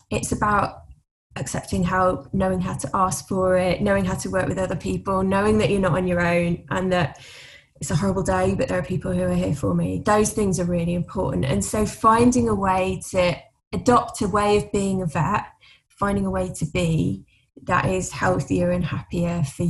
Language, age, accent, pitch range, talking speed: English, 10-29, British, 160-195 Hz, 205 wpm